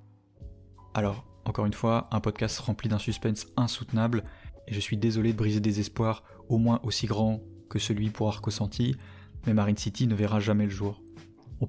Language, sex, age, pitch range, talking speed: French, male, 20-39, 105-115 Hz, 180 wpm